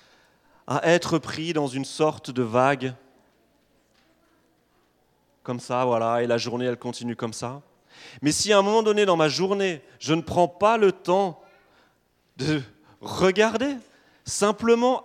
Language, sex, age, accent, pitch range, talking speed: French, male, 30-49, French, 130-195 Hz, 145 wpm